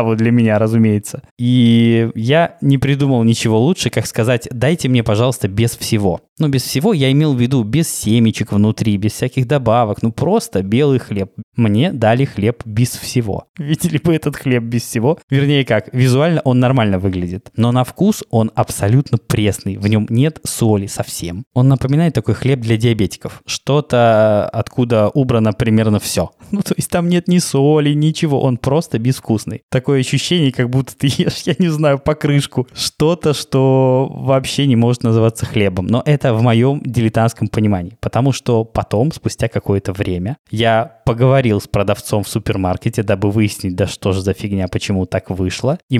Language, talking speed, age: Russian, 170 wpm, 20-39